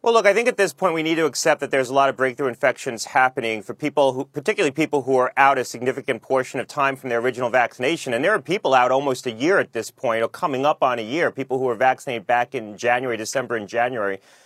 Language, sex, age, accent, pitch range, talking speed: English, male, 30-49, American, 130-155 Hz, 260 wpm